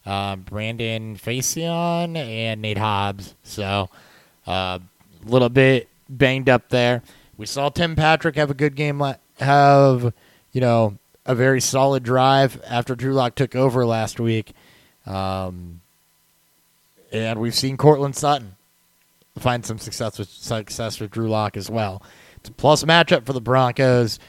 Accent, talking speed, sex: American, 145 wpm, male